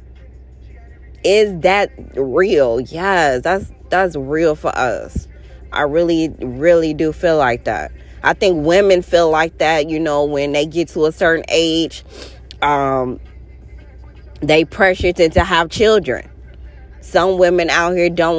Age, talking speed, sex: 20-39, 135 wpm, female